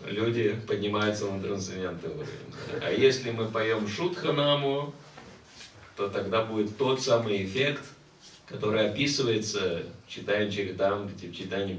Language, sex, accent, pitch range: Russian, male, native, 100-125 Hz